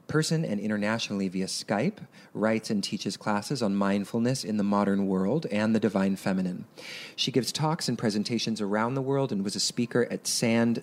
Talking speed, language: 185 wpm, English